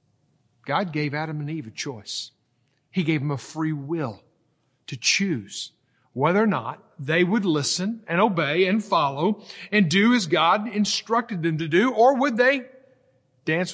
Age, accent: 50-69, American